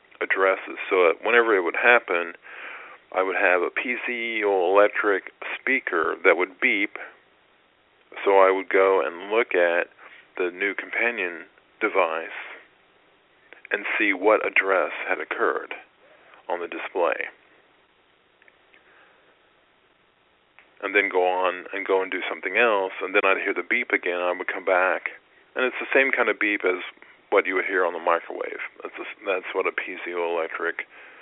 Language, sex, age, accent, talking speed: English, male, 40-59, American, 150 wpm